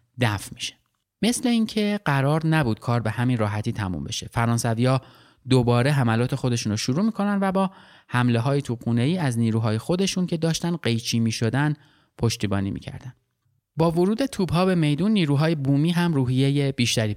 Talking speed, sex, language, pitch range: 150 wpm, male, Persian, 115-160 Hz